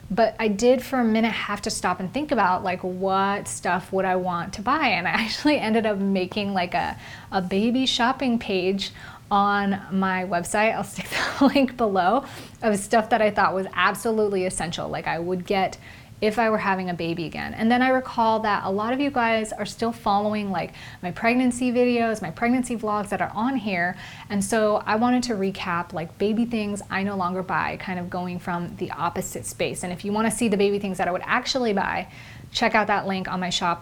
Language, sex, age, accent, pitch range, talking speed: English, female, 30-49, American, 185-225 Hz, 220 wpm